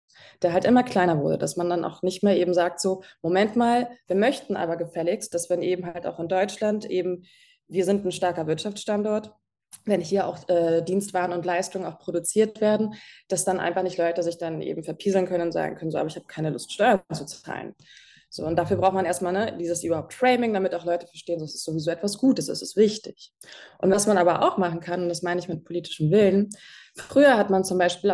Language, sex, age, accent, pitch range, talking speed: German, female, 20-39, German, 175-210 Hz, 225 wpm